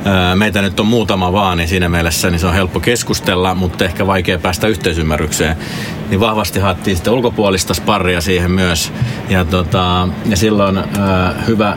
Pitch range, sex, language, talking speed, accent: 90-105 Hz, male, Finnish, 160 wpm, native